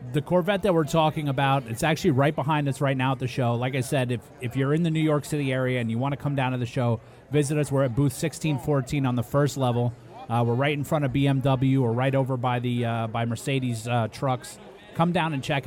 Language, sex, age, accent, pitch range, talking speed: English, male, 30-49, American, 115-140 Hz, 255 wpm